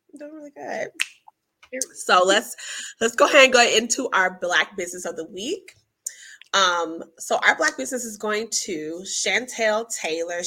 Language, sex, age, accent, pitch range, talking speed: English, female, 20-39, American, 180-230 Hz, 155 wpm